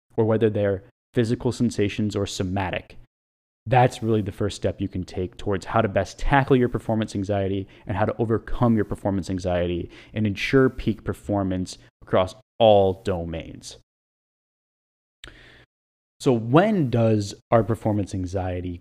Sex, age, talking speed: male, 20-39, 135 wpm